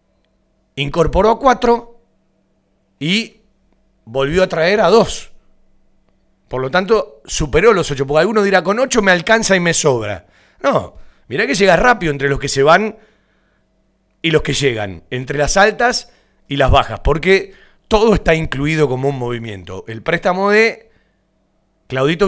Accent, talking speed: Argentinian, 150 wpm